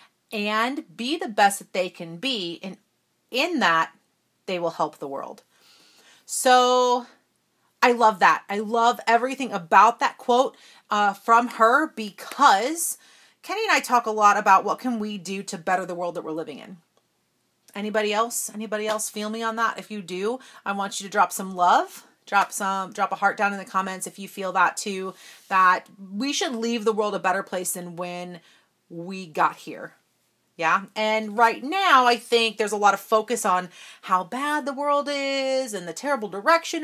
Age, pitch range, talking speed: 30-49, 195-260 Hz, 190 wpm